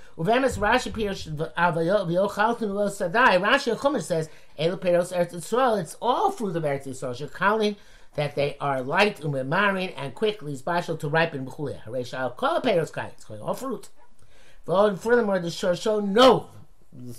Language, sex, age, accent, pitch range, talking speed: English, male, 50-69, American, 140-180 Hz, 100 wpm